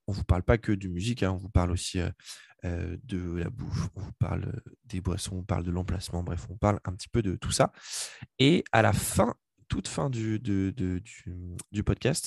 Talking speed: 215 wpm